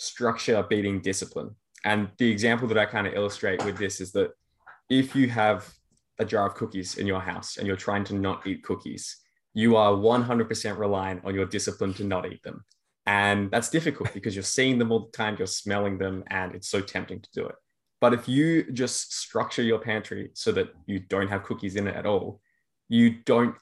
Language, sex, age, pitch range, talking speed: English, male, 20-39, 95-115 Hz, 210 wpm